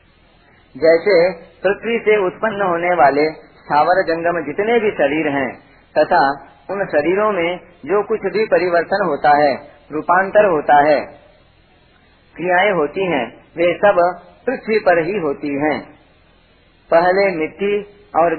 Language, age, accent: Hindi, 40-59, native